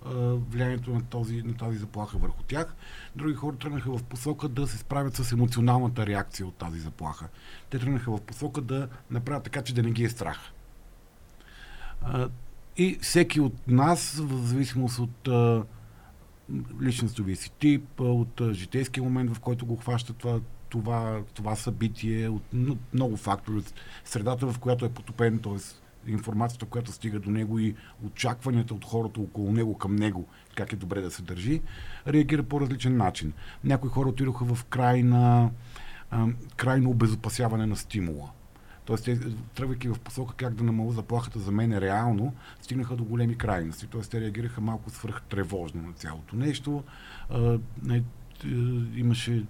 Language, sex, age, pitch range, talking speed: Bulgarian, male, 50-69, 105-125 Hz, 150 wpm